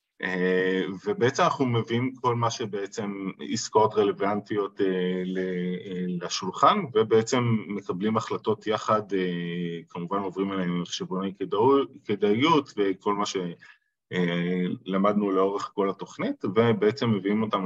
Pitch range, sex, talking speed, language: 90-105 Hz, male, 100 wpm, Hebrew